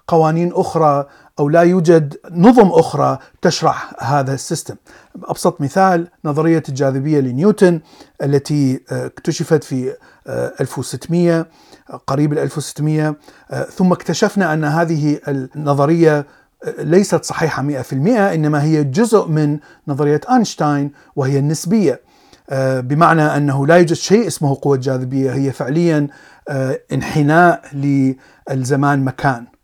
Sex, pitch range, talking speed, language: male, 140-170 Hz, 100 wpm, Arabic